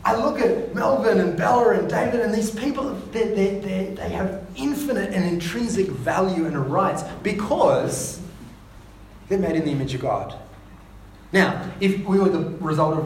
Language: English